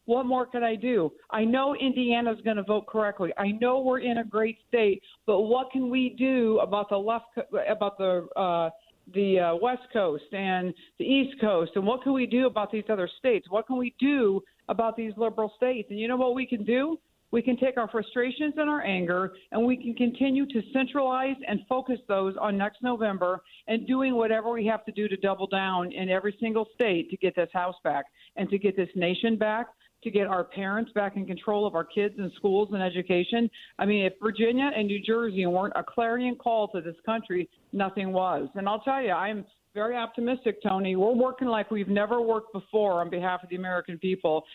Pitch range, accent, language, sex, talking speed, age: 195-240 Hz, American, English, female, 210 wpm, 50-69